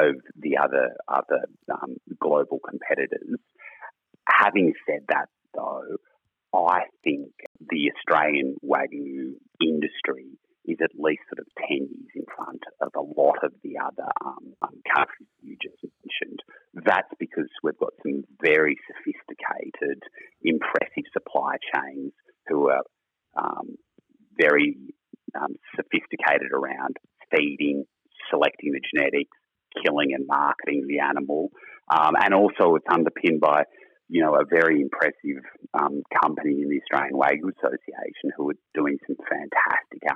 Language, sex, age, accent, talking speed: English, male, 30-49, Australian, 130 wpm